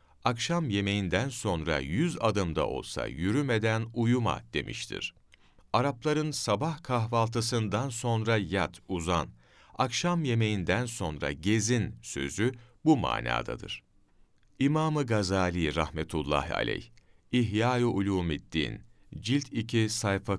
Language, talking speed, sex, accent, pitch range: Turkish, 90 wpm, male, native, 90-120 Hz